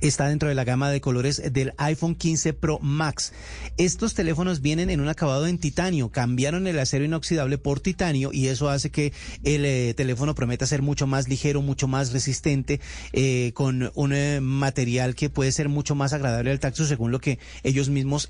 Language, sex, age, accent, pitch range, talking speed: Spanish, male, 30-49, Colombian, 130-155 Hz, 195 wpm